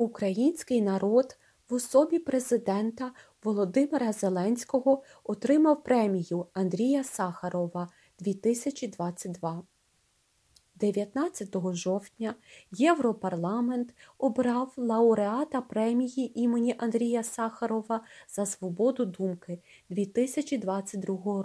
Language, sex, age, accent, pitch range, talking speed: Ukrainian, female, 20-39, native, 195-250 Hz, 70 wpm